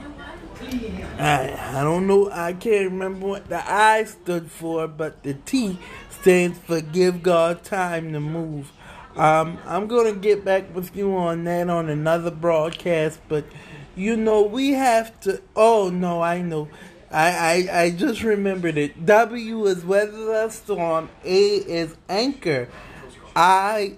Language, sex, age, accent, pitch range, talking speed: English, male, 20-39, American, 155-195 Hz, 145 wpm